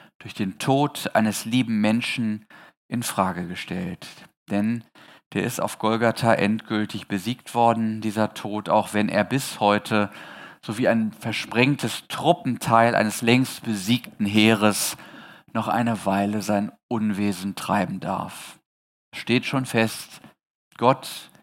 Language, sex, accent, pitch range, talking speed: German, male, German, 105-135 Hz, 125 wpm